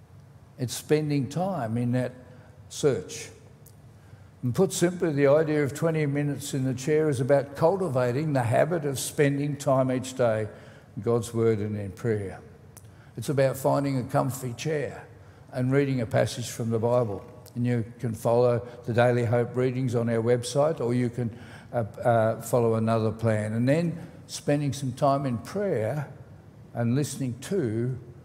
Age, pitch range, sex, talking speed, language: 60-79, 115-145 Hz, male, 160 wpm, English